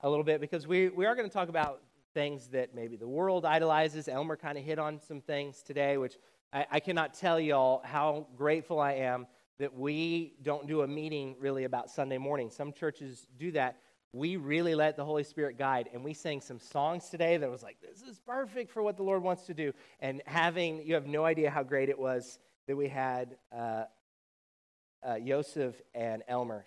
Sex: male